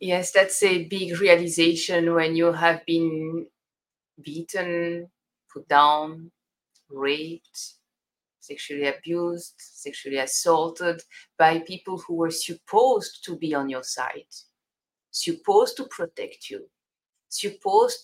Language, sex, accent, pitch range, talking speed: English, female, French, 160-195 Hz, 105 wpm